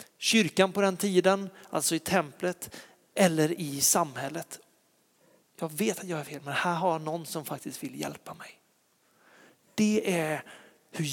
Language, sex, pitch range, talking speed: Swedish, male, 155-195 Hz, 155 wpm